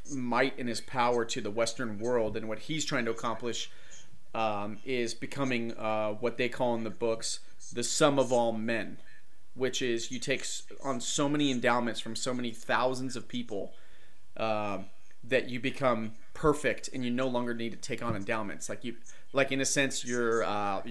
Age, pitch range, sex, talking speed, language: 30-49, 110-125 Hz, male, 185 wpm, English